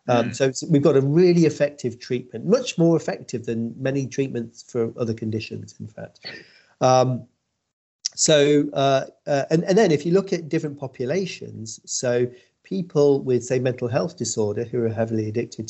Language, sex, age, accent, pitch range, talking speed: English, male, 40-59, British, 110-140 Hz, 165 wpm